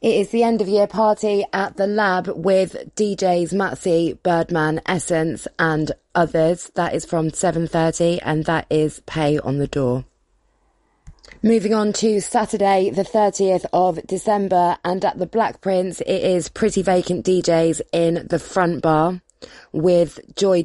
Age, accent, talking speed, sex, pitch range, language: 20-39, British, 150 wpm, female, 160-195 Hz, English